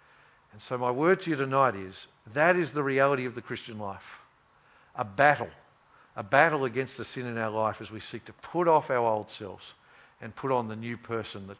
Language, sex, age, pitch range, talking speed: English, male, 50-69, 110-135 Hz, 215 wpm